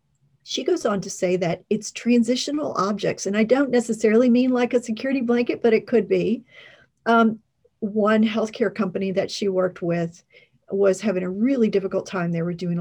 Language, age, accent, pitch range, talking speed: English, 40-59, American, 175-225 Hz, 185 wpm